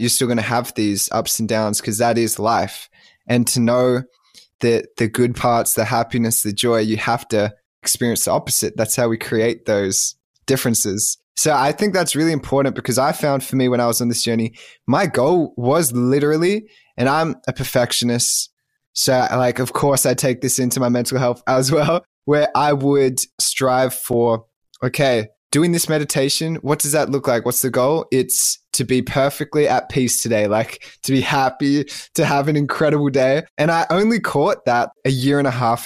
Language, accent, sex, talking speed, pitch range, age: English, Australian, male, 195 wpm, 120-145 Hz, 20-39